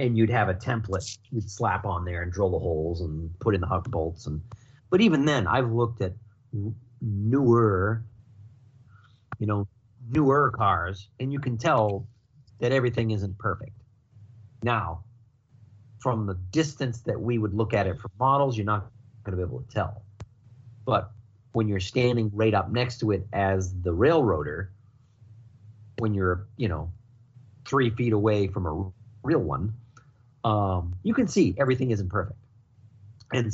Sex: male